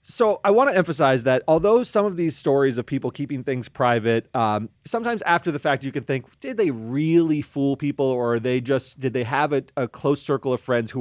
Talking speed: 235 wpm